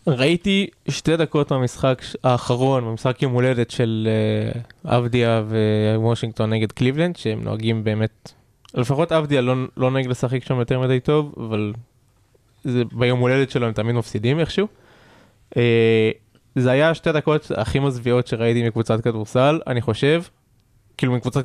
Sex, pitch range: male, 115-135 Hz